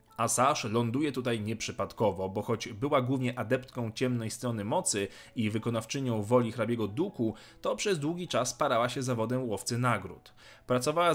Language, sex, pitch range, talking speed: Polish, male, 110-140 Hz, 145 wpm